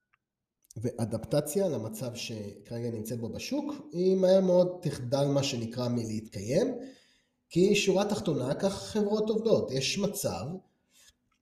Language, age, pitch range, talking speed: Hebrew, 20-39, 120-165 Hz, 110 wpm